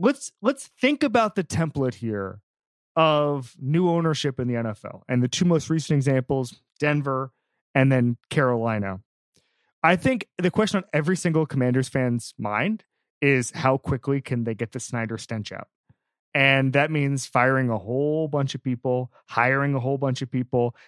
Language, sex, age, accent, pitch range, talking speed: English, male, 30-49, American, 125-165 Hz, 165 wpm